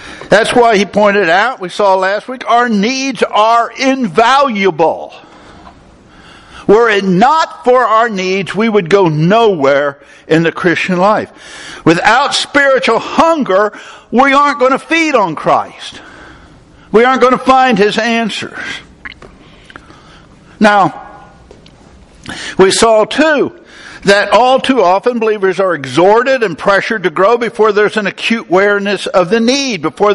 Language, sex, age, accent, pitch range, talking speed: English, male, 60-79, American, 190-245 Hz, 135 wpm